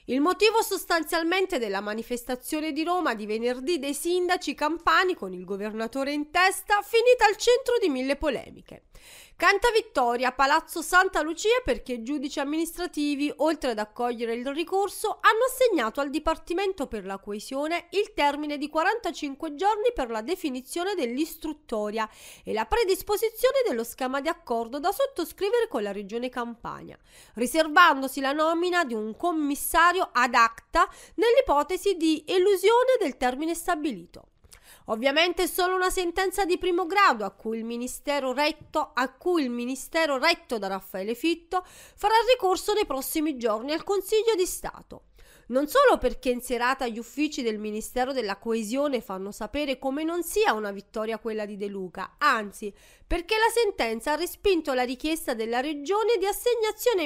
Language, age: Italian, 30-49